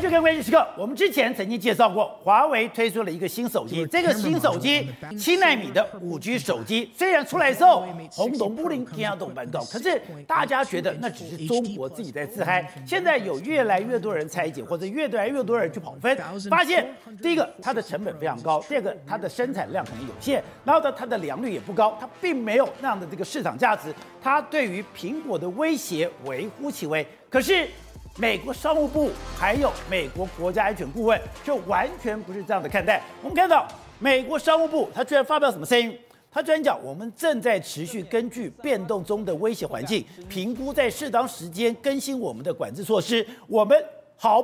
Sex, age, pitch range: male, 50-69, 205-300 Hz